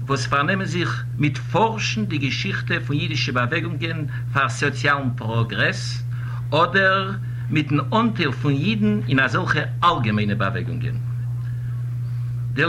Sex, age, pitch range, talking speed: male, 60-79, 120-130 Hz, 105 wpm